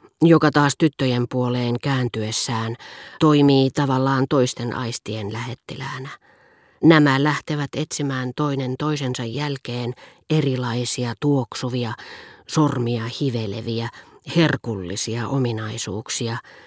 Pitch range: 120-150 Hz